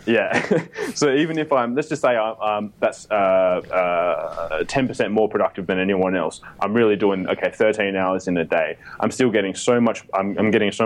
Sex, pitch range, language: male, 95-105 Hz, English